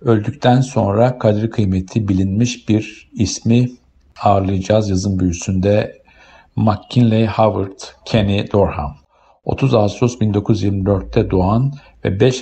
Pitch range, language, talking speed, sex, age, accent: 95-120 Hz, Turkish, 95 wpm, male, 50-69, native